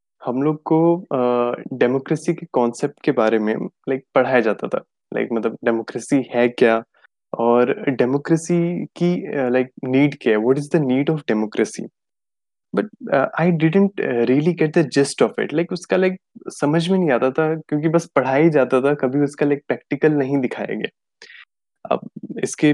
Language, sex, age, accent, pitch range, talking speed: Hindi, male, 20-39, native, 125-165 Hz, 175 wpm